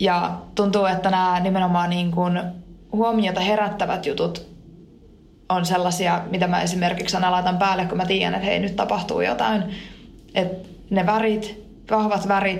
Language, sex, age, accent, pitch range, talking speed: Finnish, female, 20-39, native, 185-215 Hz, 145 wpm